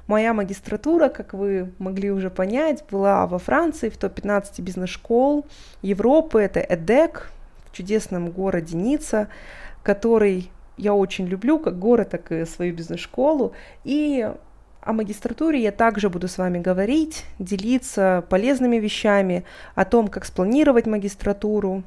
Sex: female